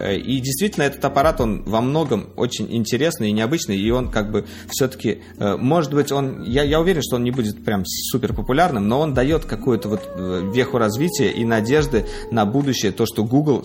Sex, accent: male, native